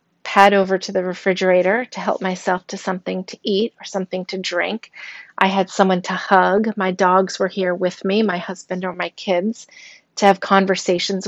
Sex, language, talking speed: female, English, 185 wpm